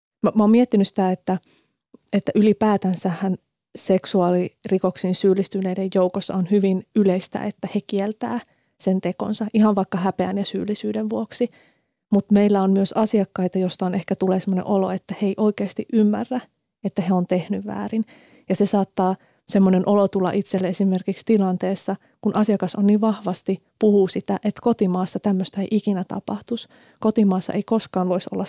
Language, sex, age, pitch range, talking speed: Finnish, female, 20-39, 190-220 Hz, 150 wpm